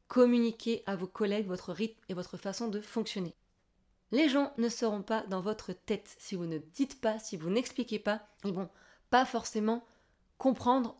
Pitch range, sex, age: 195-235 Hz, female, 20-39